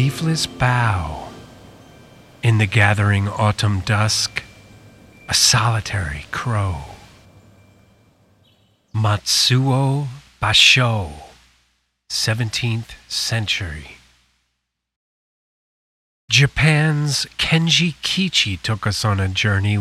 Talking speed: 65 wpm